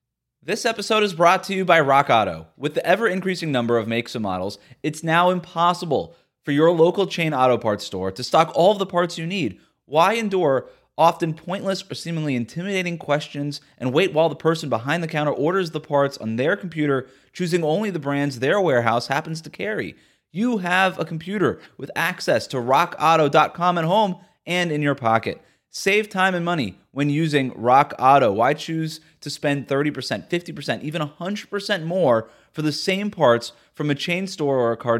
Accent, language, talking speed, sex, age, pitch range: American, English, 185 wpm, male, 20-39, 130-175 Hz